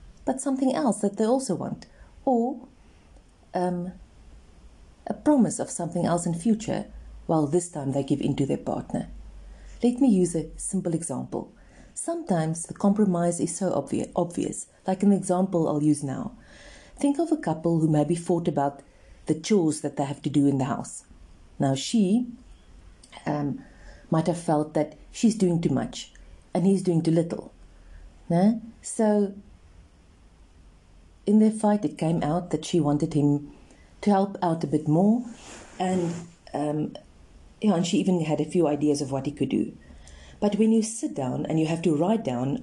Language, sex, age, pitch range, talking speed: English, female, 40-59, 135-205 Hz, 175 wpm